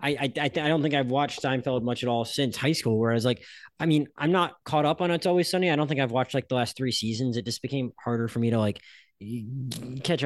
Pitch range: 110-135 Hz